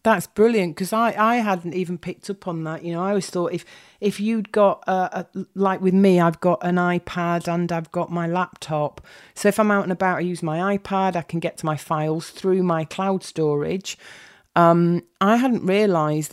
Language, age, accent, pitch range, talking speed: English, 40-59, British, 155-190 Hz, 215 wpm